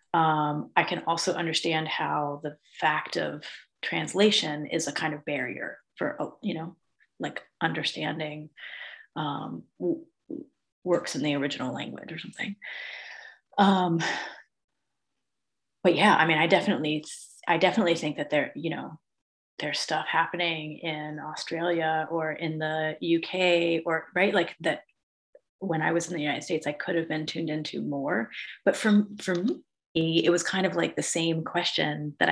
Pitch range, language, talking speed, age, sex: 155-180 Hz, English, 150 wpm, 30-49, female